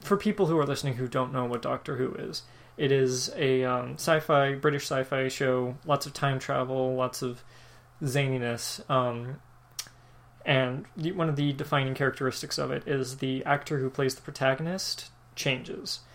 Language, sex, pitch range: English, male, 125-145 Hz